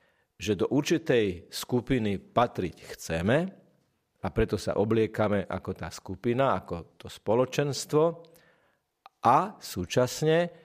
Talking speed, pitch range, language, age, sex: 100 wpm, 110-140 Hz, Slovak, 40-59, male